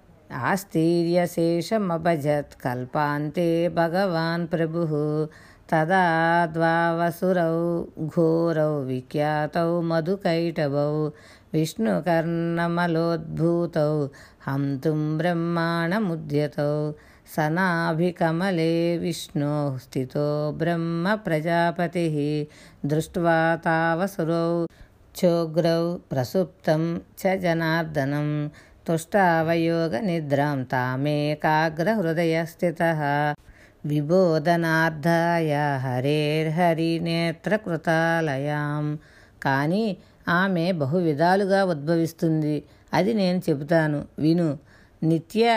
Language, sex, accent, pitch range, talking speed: Telugu, female, native, 150-175 Hz, 55 wpm